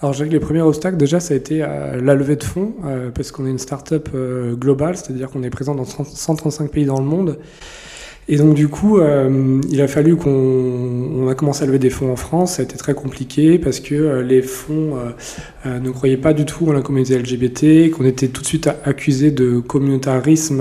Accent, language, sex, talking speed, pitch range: French, French, male, 235 wpm, 130-155 Hz